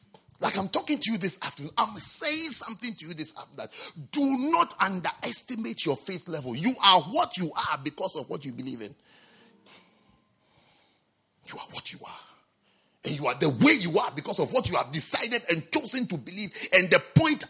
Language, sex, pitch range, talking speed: English, male, 185-275 Hz, 190 wpm